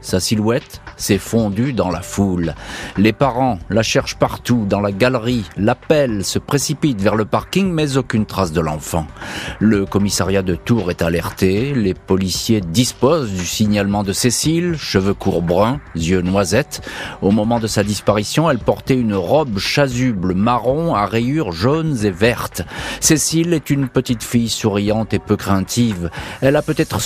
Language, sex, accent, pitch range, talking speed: French, male, French, 100-135 Hz, 160 wpm